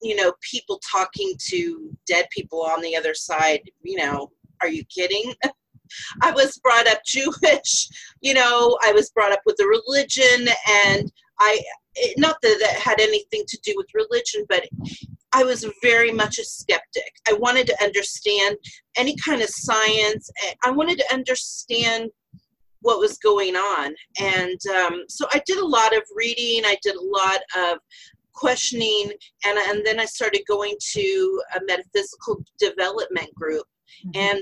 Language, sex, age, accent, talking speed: English, female, 40-59, American, 160 wpm